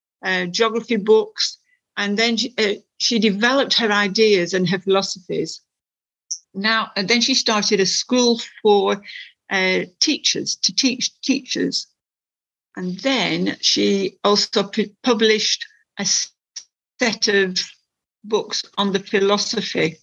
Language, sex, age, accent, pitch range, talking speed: English, female, 60-79, British, 180-230 Hz, 115 wpm